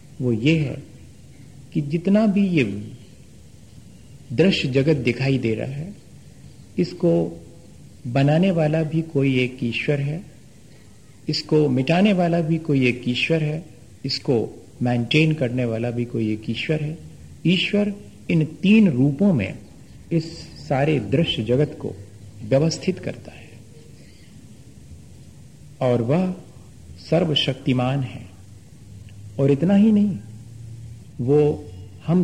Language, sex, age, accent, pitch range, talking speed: Hindi, male, 50-69, native, 115-155 Hz, 115 wpm